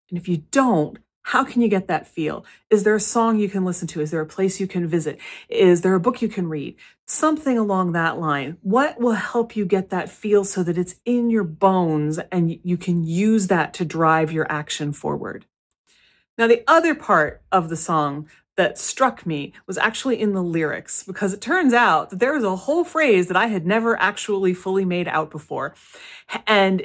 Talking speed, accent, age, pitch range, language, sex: 210 wpm, American, 30-49, 165-210 Hz, English, female